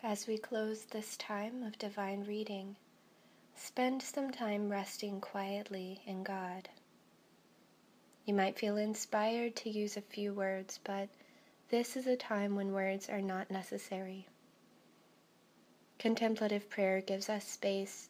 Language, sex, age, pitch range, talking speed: English, female, 20-39, 195-220 Hz, 130 wpm